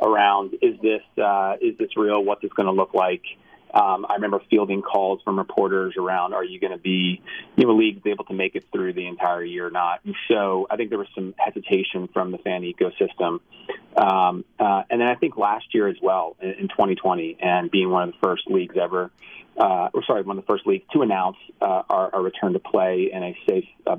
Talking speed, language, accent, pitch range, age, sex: 230 wpm, English, American, 90-110 Hz, 30-49, male